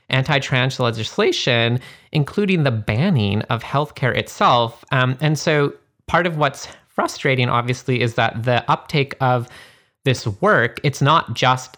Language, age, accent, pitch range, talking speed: English, 30-49, American, 115-145 Hz, 130 wpm